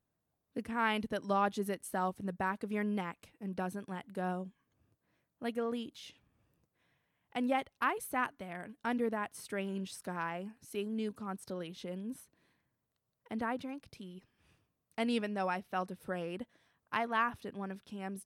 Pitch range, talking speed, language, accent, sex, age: 185-225 Hz, 150 wpm, English, American, female, 20-39